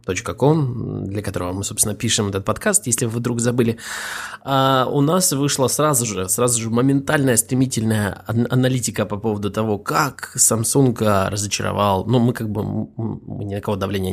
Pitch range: 110-140 Hz